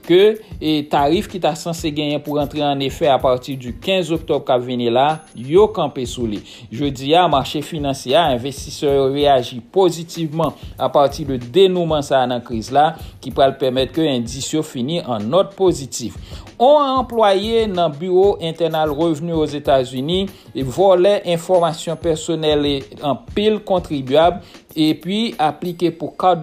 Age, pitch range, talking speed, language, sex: 60-79, 135-175 Hz, 155 wpm, English, male